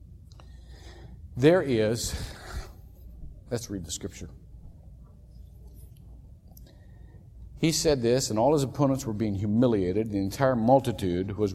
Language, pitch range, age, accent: English, 95-120 Hz, 50-69, American